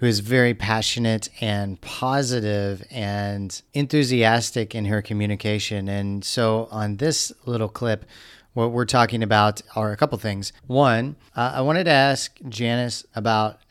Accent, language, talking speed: American, English, 145 wpm